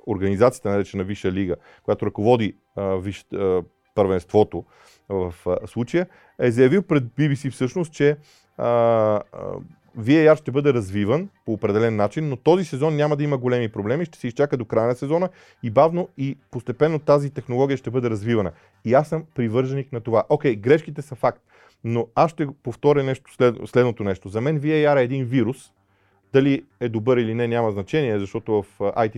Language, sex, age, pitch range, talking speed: Bulgarian, male, 30-49, 105-140 Hz, 175 wpm